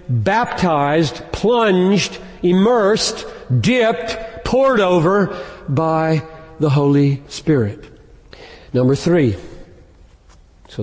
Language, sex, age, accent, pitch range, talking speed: English, male, 50-69, American, 120-185 Hz, 70 wpm